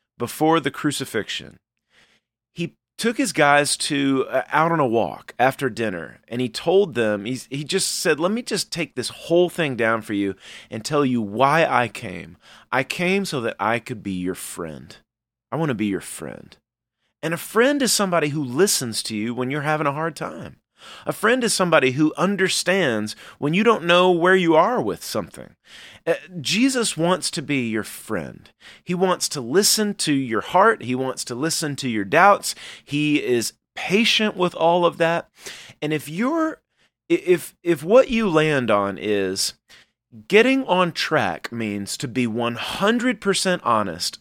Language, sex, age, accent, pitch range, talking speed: English, male, 30-49, American, 120-180 Hz, 175 wpm